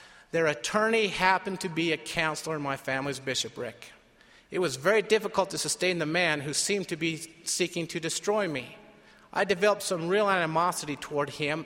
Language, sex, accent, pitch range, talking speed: English, male, American, 145-195 Hz, 175 wpm